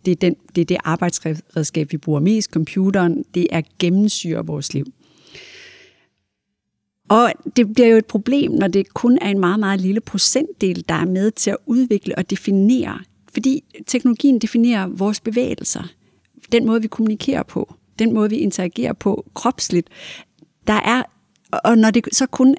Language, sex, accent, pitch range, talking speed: Danish, female, native, 180-245 Hz, 150 wpm